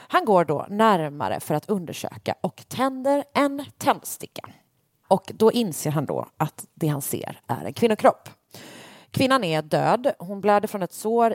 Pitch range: 155-215 Hz